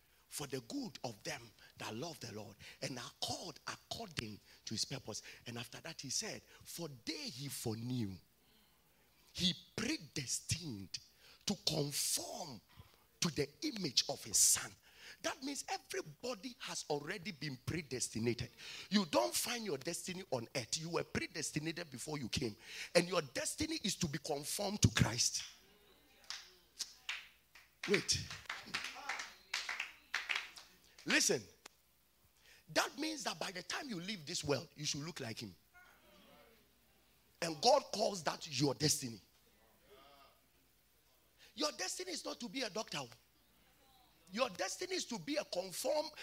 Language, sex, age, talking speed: English, male, 40-59, 135 wpm